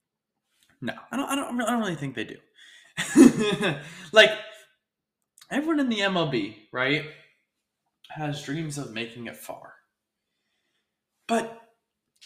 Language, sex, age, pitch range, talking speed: English, male, 20-39, 140-215 Hz, 115 wpm